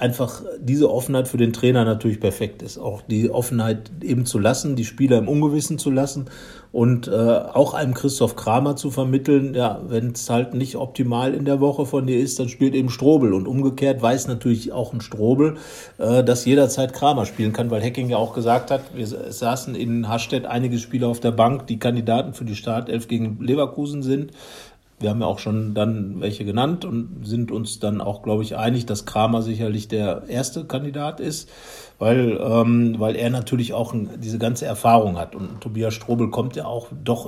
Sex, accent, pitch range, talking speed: male, German, 115-135 Hz, 195 wpm